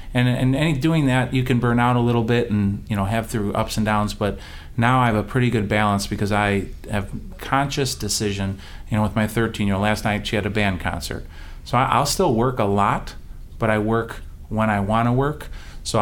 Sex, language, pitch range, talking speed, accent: male, English, 100-120 Hz, 230 wpm, American